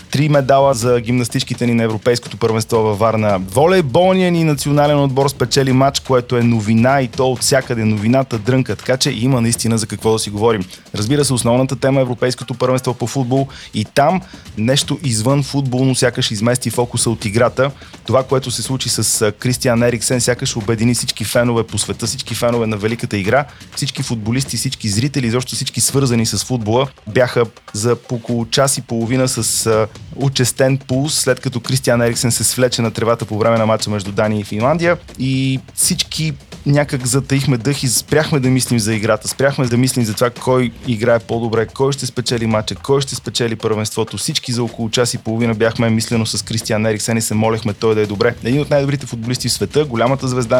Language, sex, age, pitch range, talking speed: Bulgarian, male, 30-49, 115-130 Hz, 190 wpm